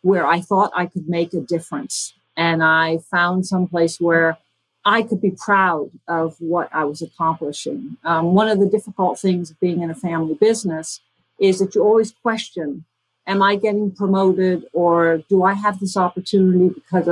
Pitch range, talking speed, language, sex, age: 165-210 Hz, 180 wpm, English, female, 50-69